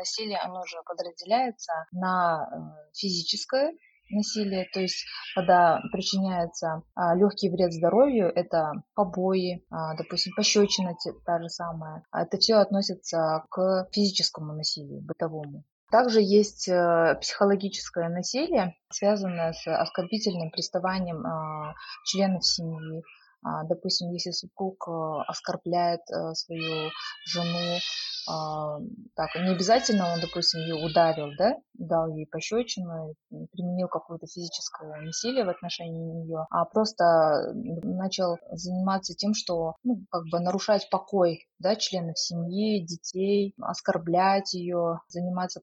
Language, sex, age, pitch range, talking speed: English, female, 20-39, 165-195 Hz, 110 wpm